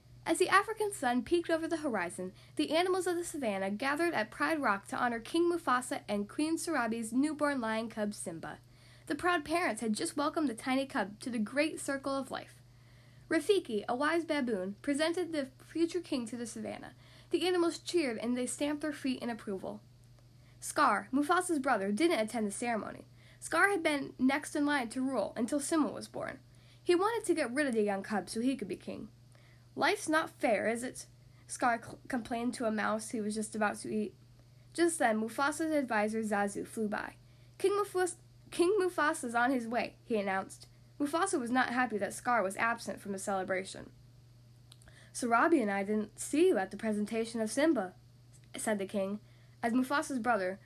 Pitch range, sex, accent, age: 190-300 Hz, female, American, 10-29